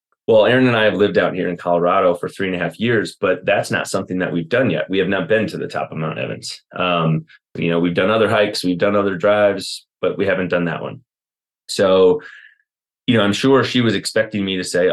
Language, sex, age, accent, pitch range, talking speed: English, male, 30-49, American, 85-105 Hz, 250 wpm